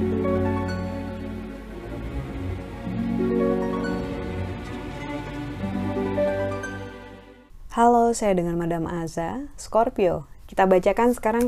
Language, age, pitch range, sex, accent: Indonesian, 20-39, 130-200 Hz, female, native